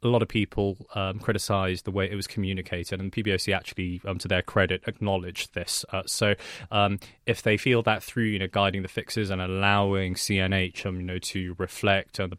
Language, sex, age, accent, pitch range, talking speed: English, male, 20-39, British, 95-100 Hz, 210 wpm